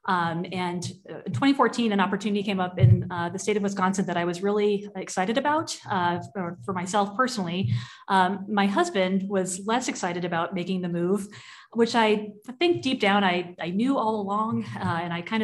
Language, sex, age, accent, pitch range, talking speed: English, female, 30-49, American, 175-210 Hz, 190 wpm